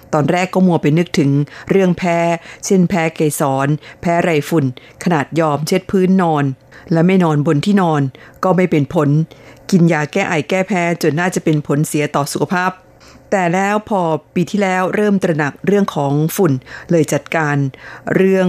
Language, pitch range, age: Thai, 150-185 Hz, 50-69